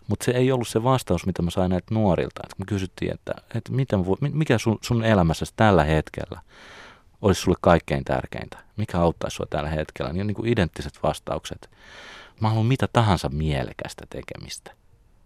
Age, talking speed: 30-49, 175 wpm